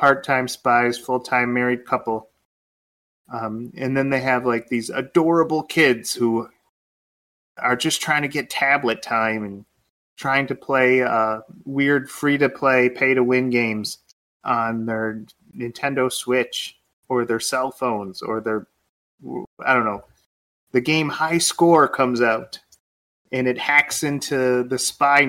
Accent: American